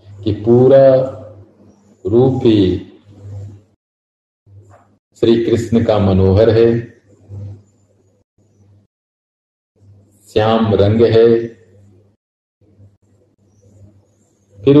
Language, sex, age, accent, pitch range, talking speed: Hindi, male, 50-69, native, 100-120 Hz, 55 wpm